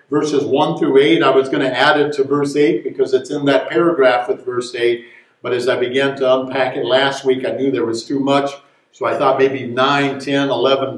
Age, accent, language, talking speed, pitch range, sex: 50-69, American, English, 235 wpm, 120-145 Hz, male